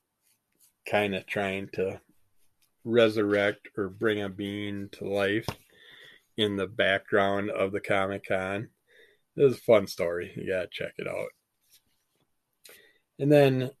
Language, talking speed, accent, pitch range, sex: English, 135 wpm, American, 100-130 Hz, male